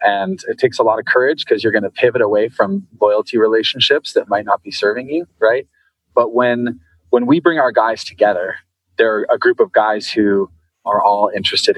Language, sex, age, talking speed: English, male, 30-49, 205 wpm